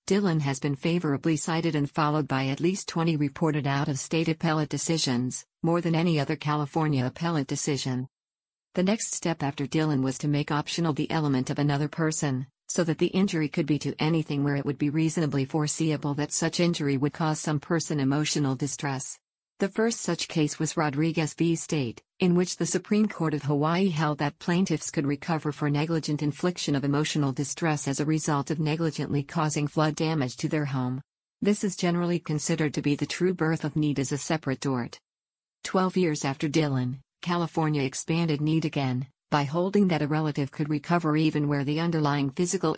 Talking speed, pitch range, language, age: 185 wpm, 145-165 Hz, English, 50-69